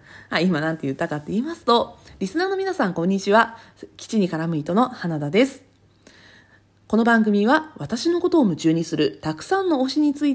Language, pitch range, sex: Japanese, 165-270 Hz, female